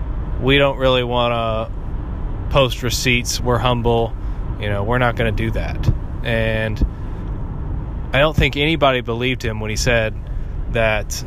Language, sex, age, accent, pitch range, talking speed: English, male, 20-39, American, 105-130 Hz, 150 wpm